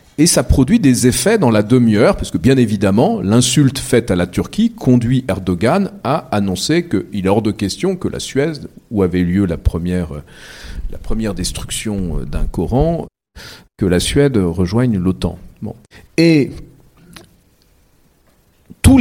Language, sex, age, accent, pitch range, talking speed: French, male, 50-69, French, 95-130 Hz, 140 wpm